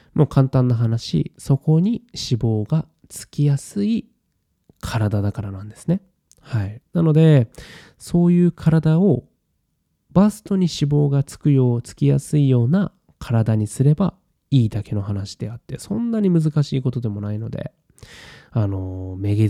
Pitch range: 110-150 Hz